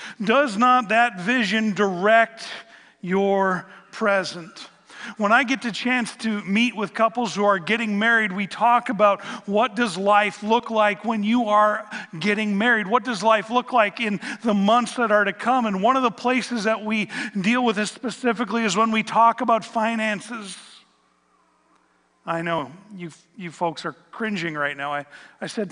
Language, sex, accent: English, male, American